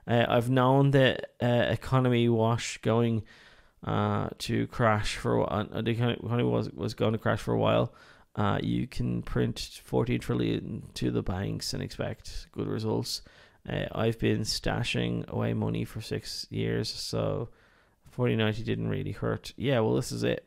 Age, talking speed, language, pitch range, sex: 20-39, 165 wpm, English, 105-130 Hz, male